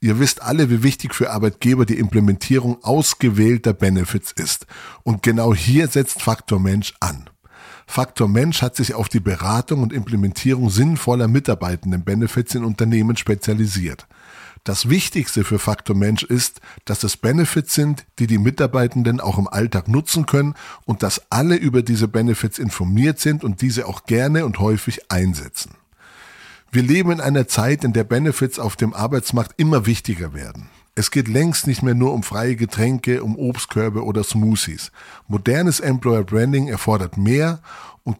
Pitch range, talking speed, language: 105-135 Hz, 155 wpm, German